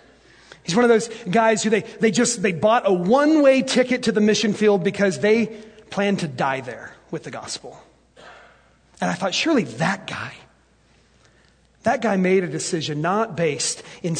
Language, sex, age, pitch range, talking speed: English, male, 30-49, 180-220 Hz, 175 wpm